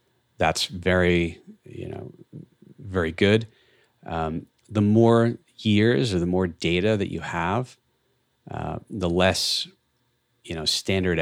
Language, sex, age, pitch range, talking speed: English, male, 30-49, 80-115 Hz, 125 wpm